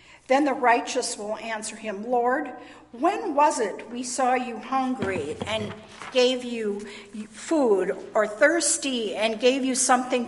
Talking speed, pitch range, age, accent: 140 wpm, 215-270 Hz, 50-69, American